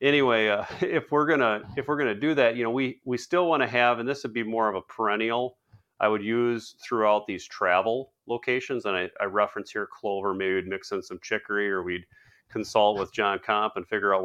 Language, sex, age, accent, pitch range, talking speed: English, male, 40-59, American, 100-120 Hz, 230 wpm